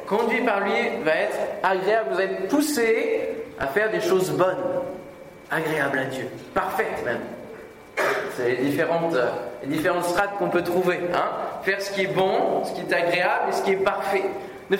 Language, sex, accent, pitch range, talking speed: French, male, French, 150-245 Hz, 180 wpm